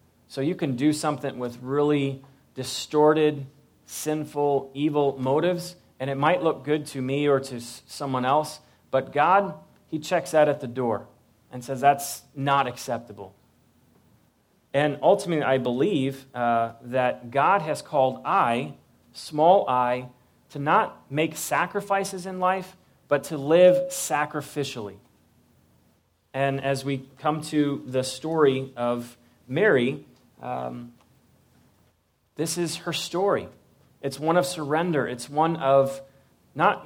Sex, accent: male, American